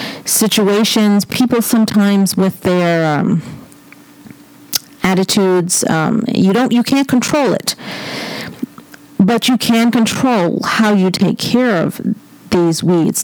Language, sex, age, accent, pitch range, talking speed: English, female, 40-59, American, 175-230 Hz, 115 wpm